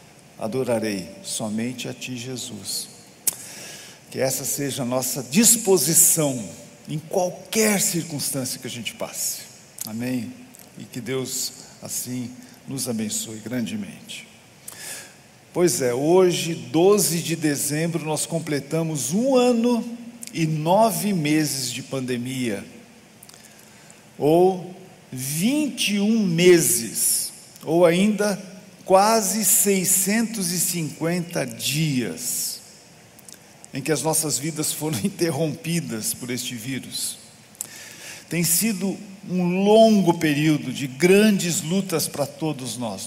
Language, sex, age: Portuguese, male, 50-69